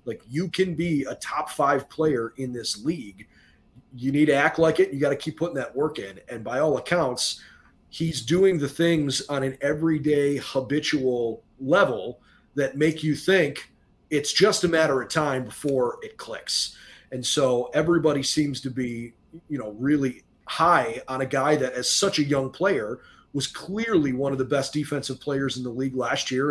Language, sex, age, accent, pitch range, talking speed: English, male, 30-49, American, 130-155 Hz, 190 wpm